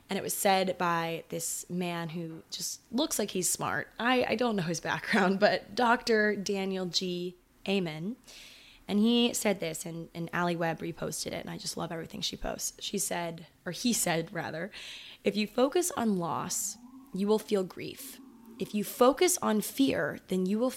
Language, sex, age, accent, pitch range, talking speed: English, female, 20-39, American, 175-225 Hz, 185 wpm